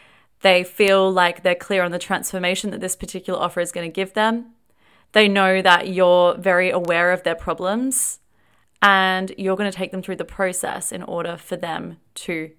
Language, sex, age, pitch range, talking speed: English, female, 20-39, 180-210 Hz, 190 wpm